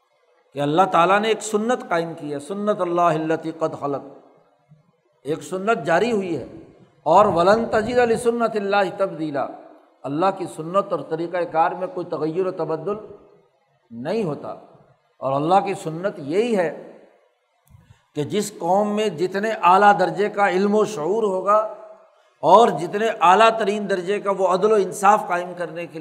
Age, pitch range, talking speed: 60-79, 165-210 Hz, 160 wpm